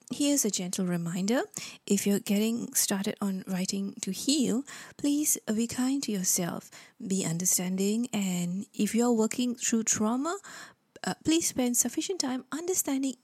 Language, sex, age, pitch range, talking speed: English, female, 20-39, 200-255 Hz, 140 wpm